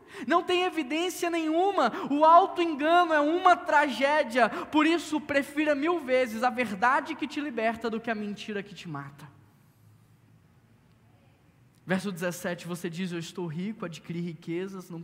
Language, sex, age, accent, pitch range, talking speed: Portuguese, male, 10-29, Brazilian, 150-250 Hz, 150 wpm